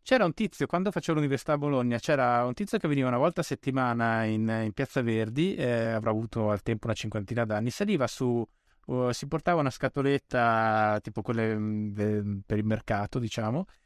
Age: 20-39